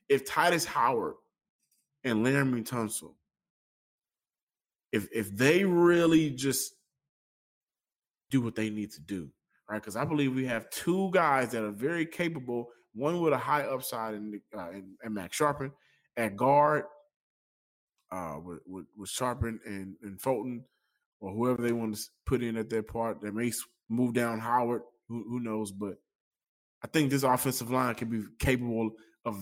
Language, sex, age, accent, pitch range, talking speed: English, male, 20-39, American, 110-135 Hz, 160 wpm